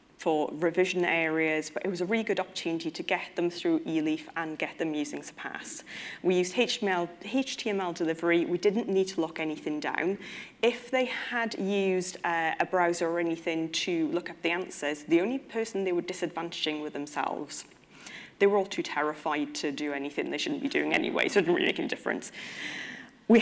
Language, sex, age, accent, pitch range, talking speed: English, female, 30-49, British, 165-220 Hz, 190 wpm